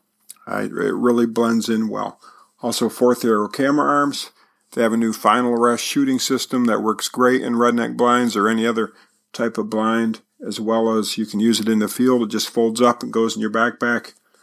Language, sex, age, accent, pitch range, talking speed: English, male, 50-69, American, 115-125 Hz, 210 wpm